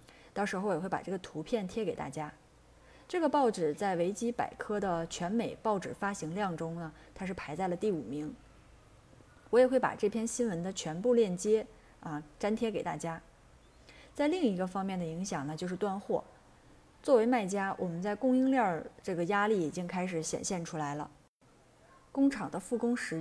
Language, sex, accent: Chinese, female, native